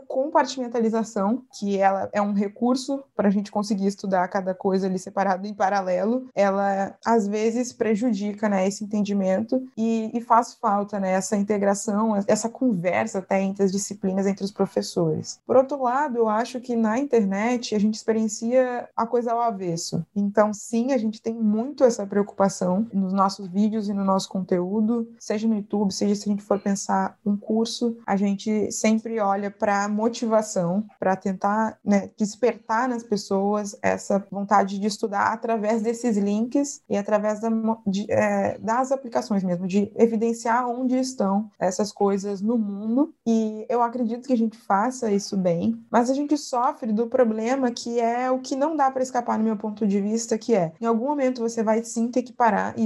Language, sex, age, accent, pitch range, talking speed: Portuguese, female, 20-39, Brazilian, 200-235 Hz, 175 wpm